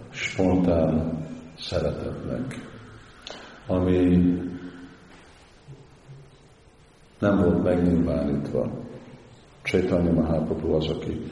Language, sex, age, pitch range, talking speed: Hungarian, male, 50-69, 85-95 Hz, 55 wpm